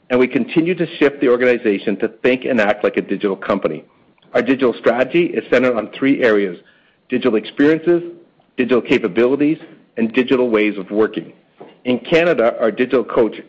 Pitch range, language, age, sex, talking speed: 115-155 Hz, English, 50-69, male, 165 wpm